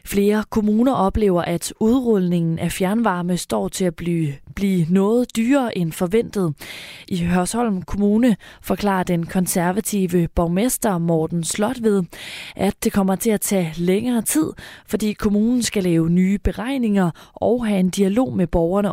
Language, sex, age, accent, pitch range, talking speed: Danish, female, 20-39, native, 175-220 Hz, 145 wpm